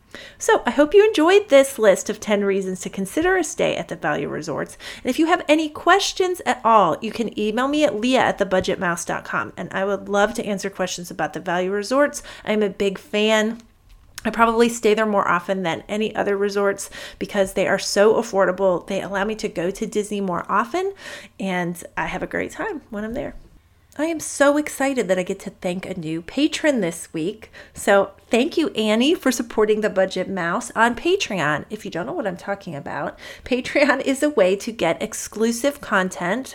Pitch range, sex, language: 195-270 Hz, female, English